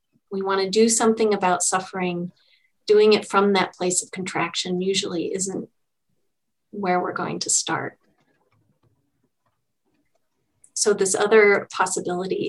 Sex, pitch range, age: female, 185-210 Hz, 30-49